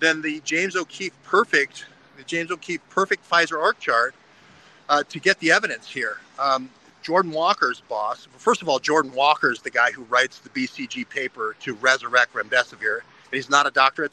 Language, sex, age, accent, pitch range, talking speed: English, male, 50-69, American, 140-185 Hz, 160 wpm